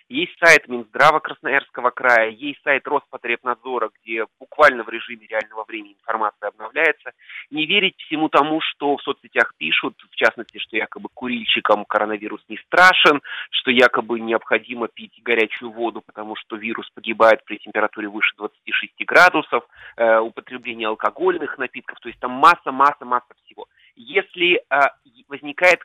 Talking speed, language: 135 wpm, Russian